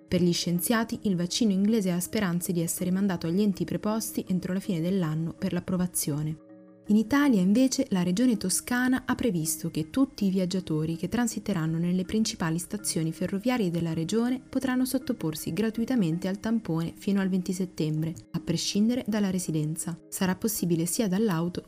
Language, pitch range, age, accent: Italian, 165-205 Hz, 20-39, native